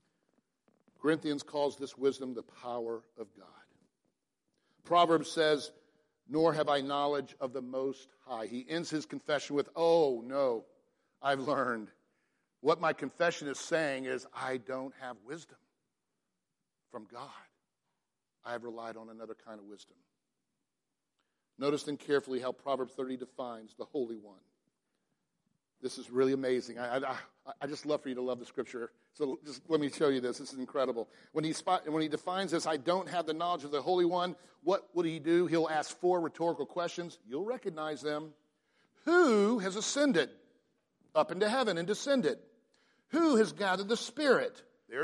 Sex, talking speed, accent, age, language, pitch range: male, 165 wpm, American, 50-69, English, 135-195 Hz